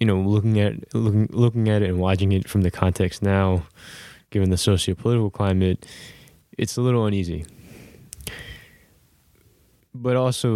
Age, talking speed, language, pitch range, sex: 10-29, 150 wpm, English, 95-110 Hz, male